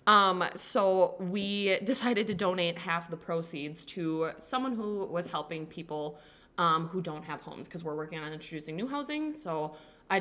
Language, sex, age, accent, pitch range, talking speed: English, female, 20-39, American, 155-180 Hz, 170 wpm